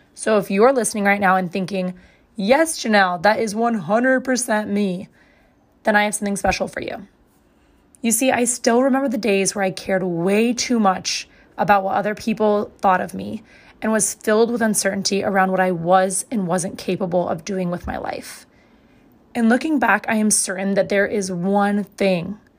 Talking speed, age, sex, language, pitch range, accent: 185 wpm, 20-39, female, English, 190-225 Hz, American